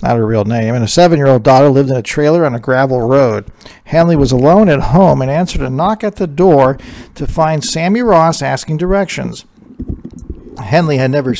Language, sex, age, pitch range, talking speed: English, male, 50-69, 130-160 Hz, 195 wpm